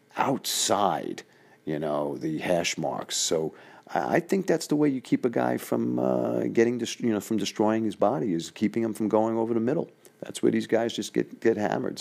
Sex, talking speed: male, 210 wpm